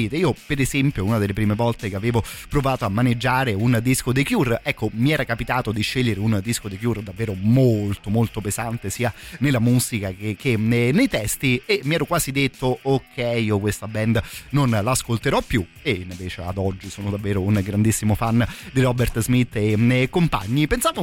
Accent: native